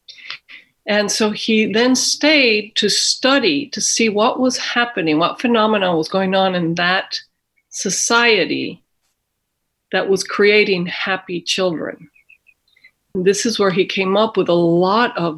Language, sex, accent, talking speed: English, female, American, 135 wpm